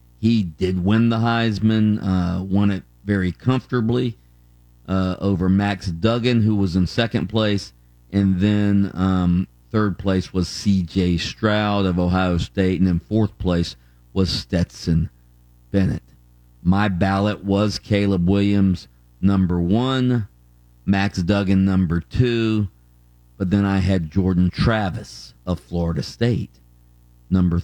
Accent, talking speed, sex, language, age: American, 125 wpm, male, English, 50-69